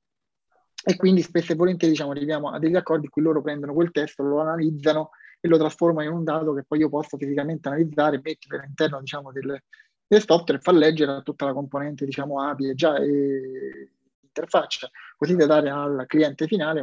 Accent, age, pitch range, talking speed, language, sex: native, 30-49, 140-165 Hz, 185 wpm, Italian, male